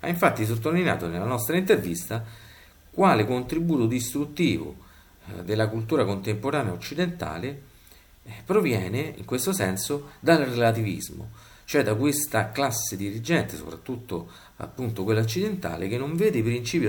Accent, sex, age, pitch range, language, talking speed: native, male, 50-69, 95-145 Hz, Italian, 115 wpm